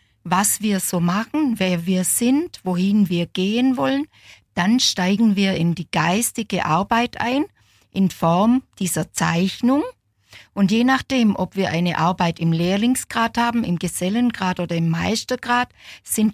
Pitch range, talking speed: 175-230 Hz, 145 wpm